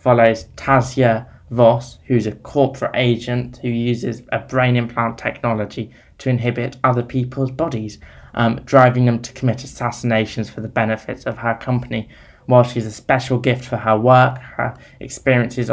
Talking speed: 155 wpm